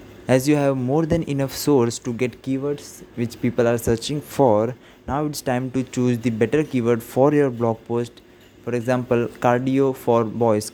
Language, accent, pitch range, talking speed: English, Indian, 115-135 Hz, 180 wpm